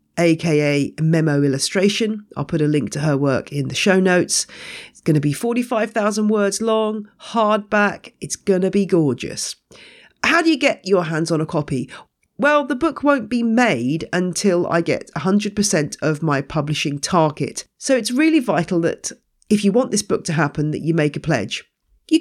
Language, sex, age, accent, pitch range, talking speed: English, female, 40-59, British, 150-215 Hz, 185 wpm